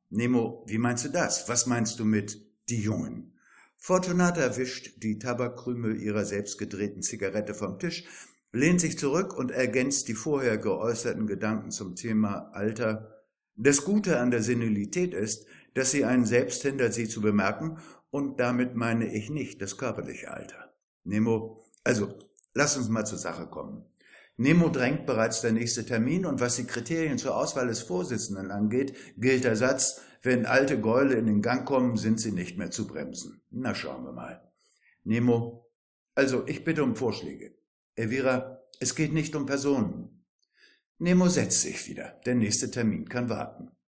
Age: 60-79